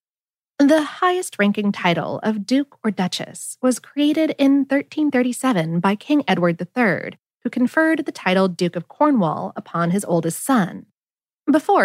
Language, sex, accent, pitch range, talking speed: English, female, American, 185-285 Hz, 135 wpm